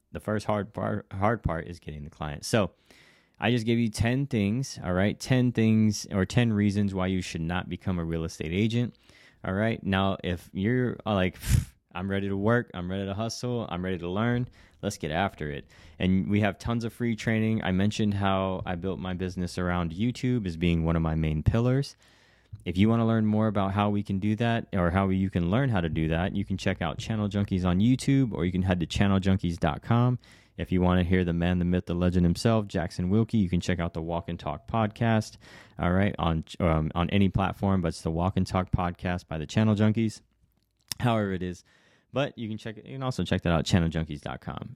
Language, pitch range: English, 90-110 Hz